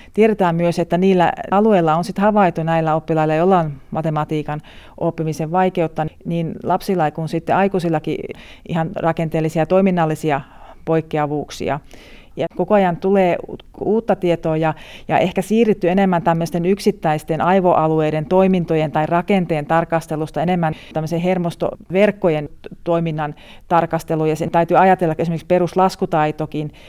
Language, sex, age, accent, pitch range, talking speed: Finnish, female, 40-59, native, 155-180 Hz, 125 wpm